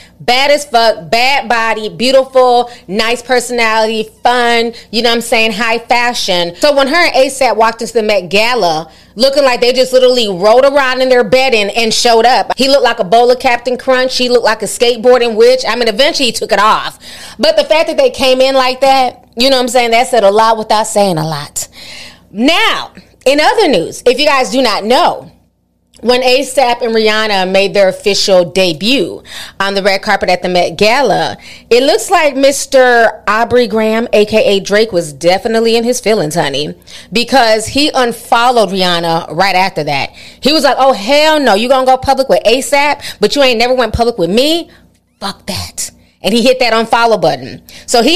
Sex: female